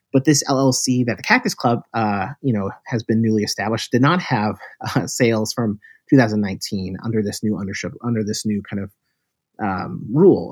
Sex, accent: male, American